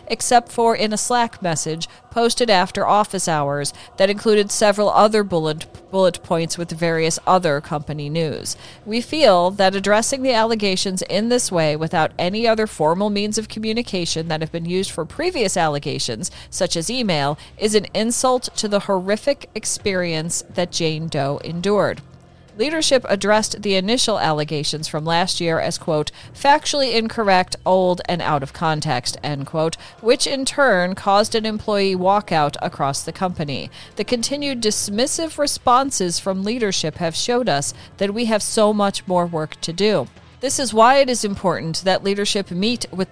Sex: female